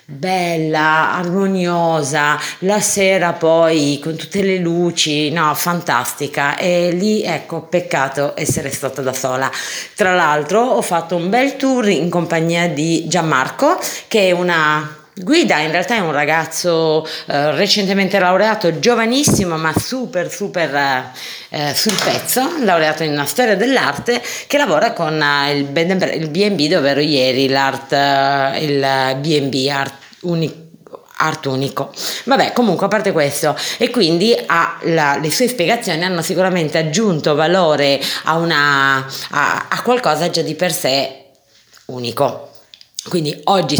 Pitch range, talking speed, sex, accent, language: 145-195 Hz, 135 wpm, female, native, Italian